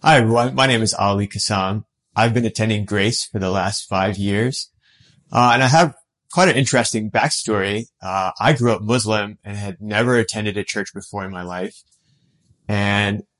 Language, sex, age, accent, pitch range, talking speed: English, male, 30-49, American, 95-120 Hz, 180 wpm